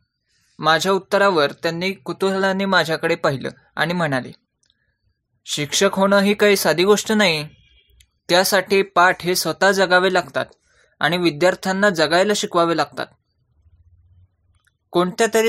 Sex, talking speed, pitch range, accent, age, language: male, 105 wpm, 140-195 Hz, native, 20-39, Marathi